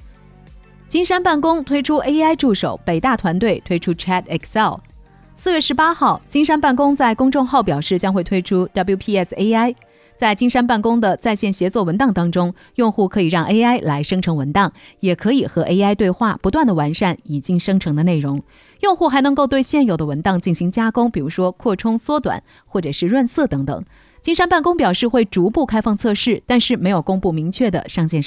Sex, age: female, 30-49